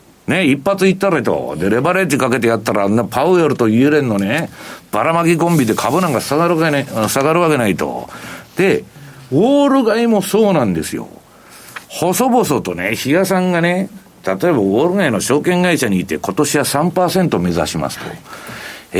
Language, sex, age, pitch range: Japanese, male, 60-79, 125-190 Hz